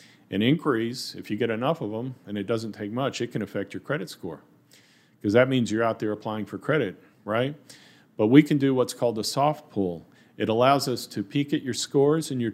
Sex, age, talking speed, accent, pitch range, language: male, 40-59, 230 wpm, American, 100-130 Hz, English